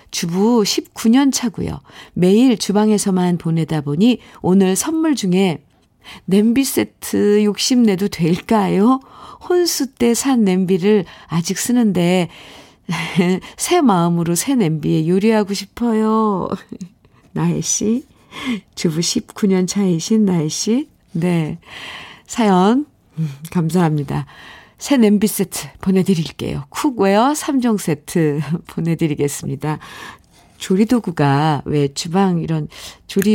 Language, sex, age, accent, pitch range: Korean, female, 50-69, native, 165-220 Hz